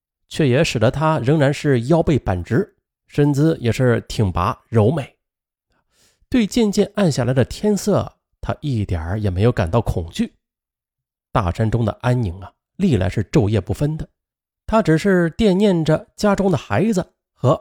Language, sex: Chinese, male